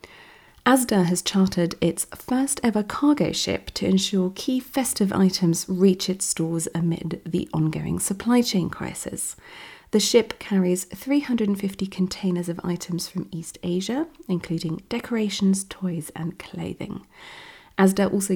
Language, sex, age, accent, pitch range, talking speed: English, female, 30-49, British, 175-235 Hz, 125 wpm